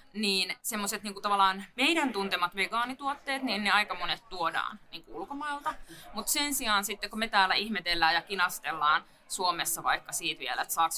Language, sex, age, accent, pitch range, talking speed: Finnish, female, 20-39, native, 170-200 Hz, 165 wpm